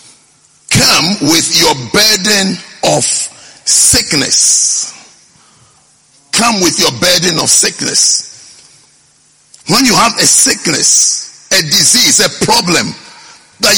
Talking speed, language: 95 wpm, English